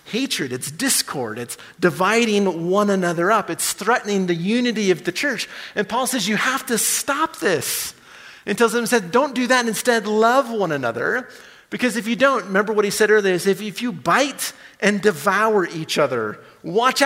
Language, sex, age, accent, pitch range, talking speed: English, male, 40-59, American, 165-220 Hz, 185 wpm